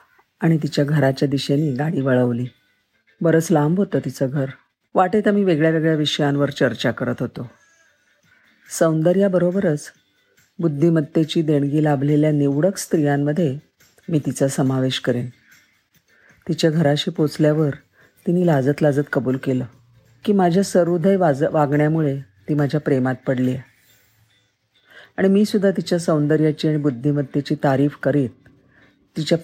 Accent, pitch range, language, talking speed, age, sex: native, 135-175 Hz, Marathi, 110 wpm, 50-69, female